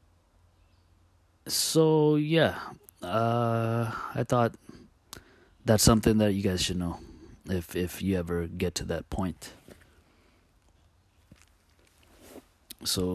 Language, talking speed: English, 95 wpm